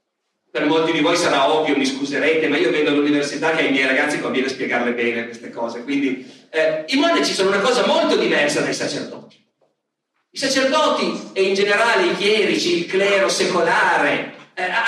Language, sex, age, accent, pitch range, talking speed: Italian, male, 50-69, native, 165-265 Hz, 175 wpm